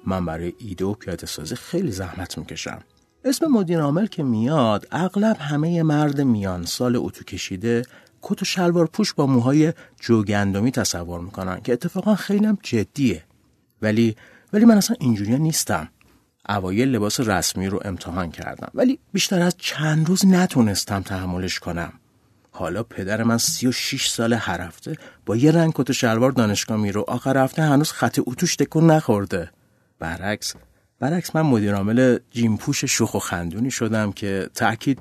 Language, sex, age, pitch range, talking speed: Persian, male, 30-49, 95-140 Hz, 145 wpm